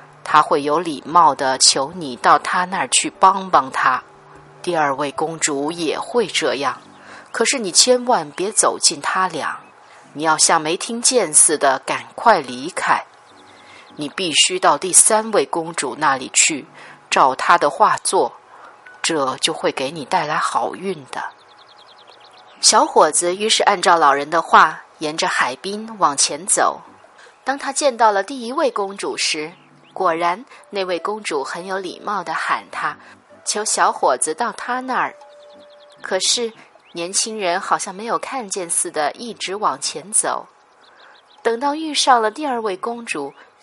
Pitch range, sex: 175-260 Hz, female